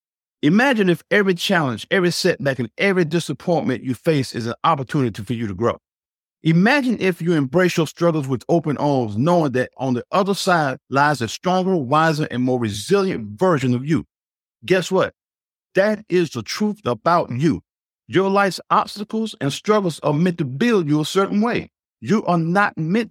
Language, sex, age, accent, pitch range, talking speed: English, male, 50-69, American, 135-195 Hz, 175 wpm